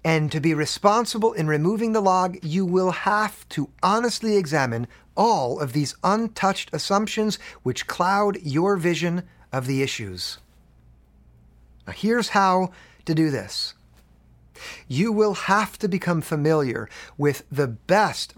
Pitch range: 130-195 Hz